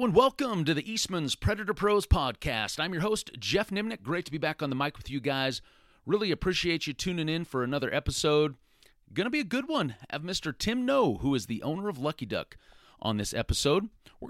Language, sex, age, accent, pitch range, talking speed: English, male, 40-59, American, 115-160 Hz, 220 wpm